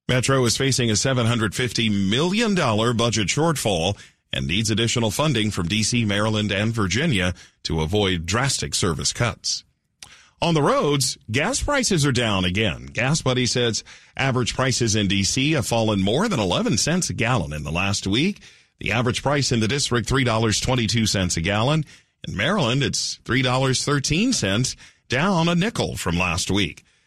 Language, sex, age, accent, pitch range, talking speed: English, male, 40-59, American, 100-135 Hz, 150 wpm